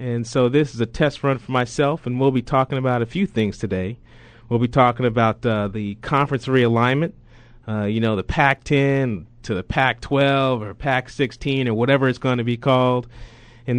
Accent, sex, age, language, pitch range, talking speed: American, male, 30-49, English, 110-125 Hz, 190 wpm